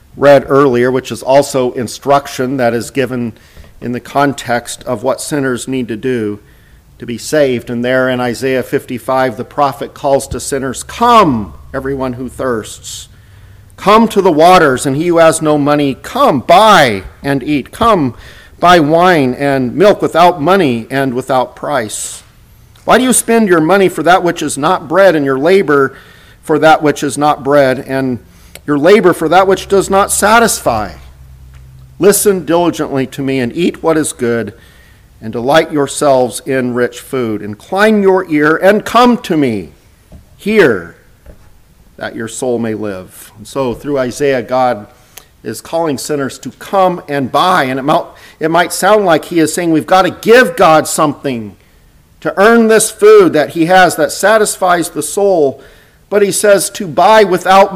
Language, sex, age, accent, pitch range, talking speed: English, male, 50-69, American, 120-175 Hz, 165 wpm